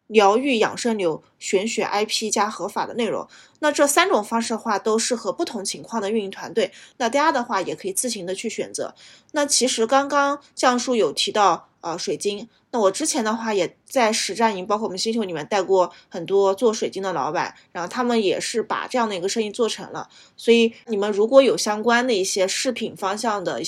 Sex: female